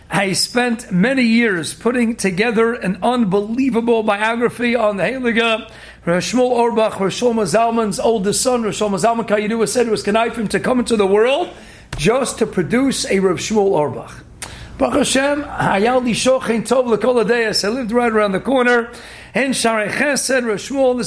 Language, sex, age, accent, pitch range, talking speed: English, male, 50-69, American, 210-245 Hz, 135 wpm